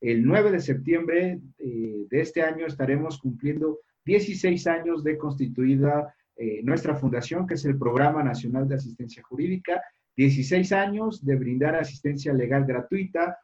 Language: Spanish